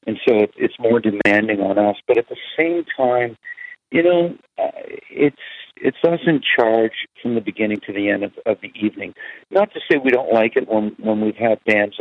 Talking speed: 210 wpm